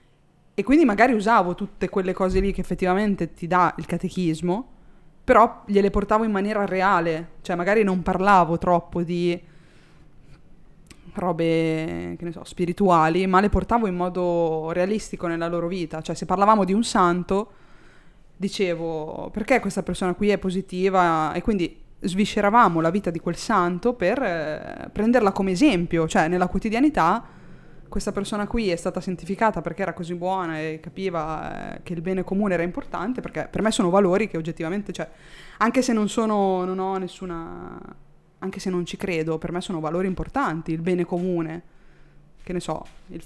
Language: Italian